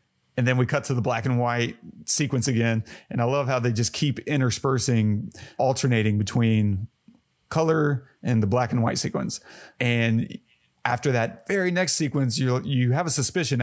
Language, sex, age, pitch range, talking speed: English, male, 30-49, 115-140 Hz, 165 wpm